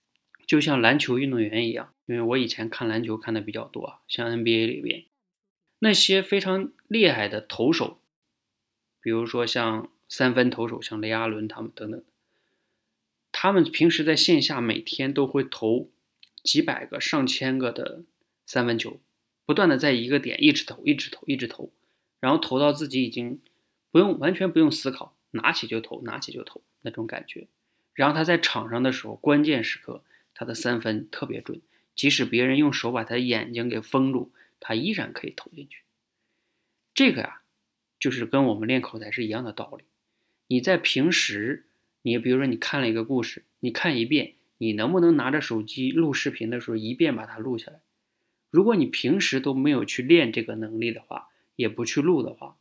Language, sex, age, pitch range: Chinese, male, 20-39, 115-155 Hz